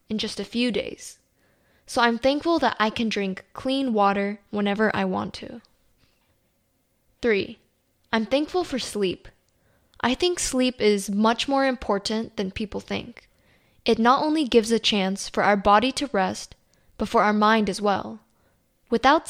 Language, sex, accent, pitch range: Korean, female, American, 205-245 Hz